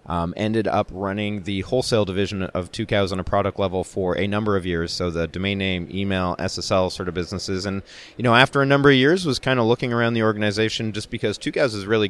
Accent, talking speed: American, 235 wpm